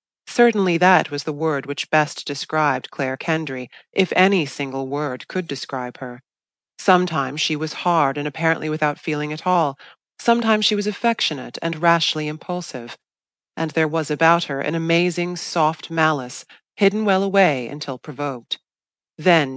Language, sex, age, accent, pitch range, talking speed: English, female, 30-49, American, 140-175 Hz, 150 wpm